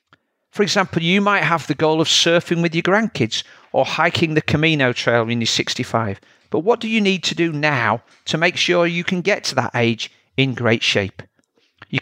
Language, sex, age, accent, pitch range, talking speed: English, male, 50-69, British, 115-170 Hz, 205 wpm